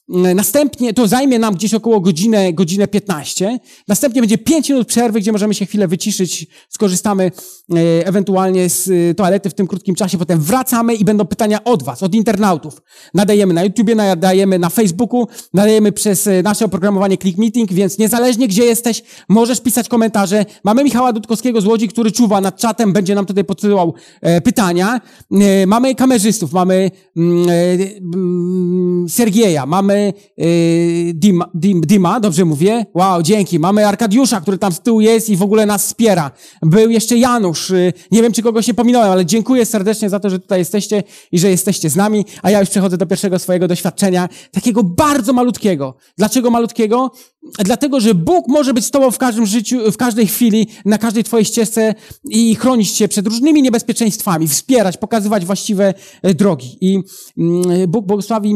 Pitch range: 190-230 Hz